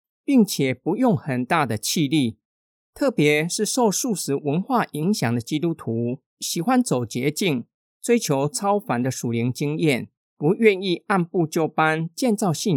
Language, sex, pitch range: Chinese, male, 130-200 Hz